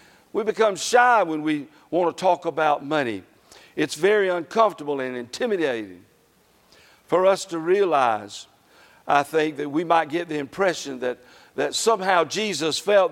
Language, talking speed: English, 145 wpm